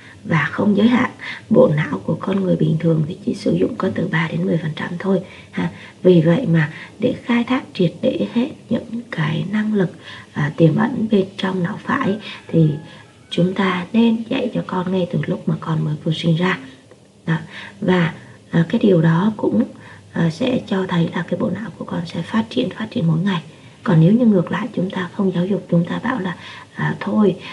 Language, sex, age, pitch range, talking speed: Vietnamese, female, 20-39, 165-205 Hz, 205 wpm